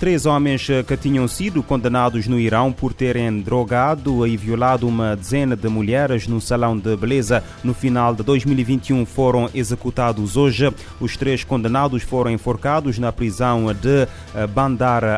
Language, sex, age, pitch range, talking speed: Portuguese, male, 30-49, 115-130 Hz, 145 wpm